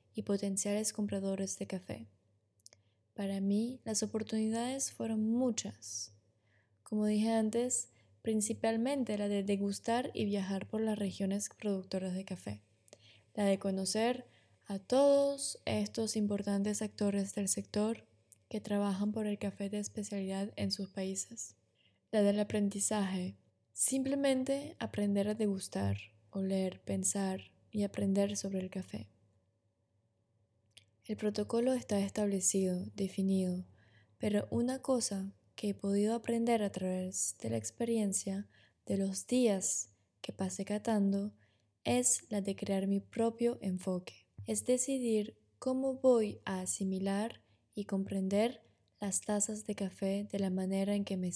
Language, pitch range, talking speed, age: Spanish, 180-215 Hz, 125 wpm, 20-39